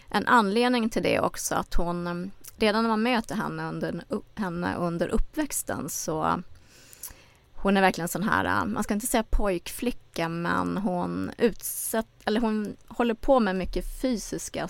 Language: Swedish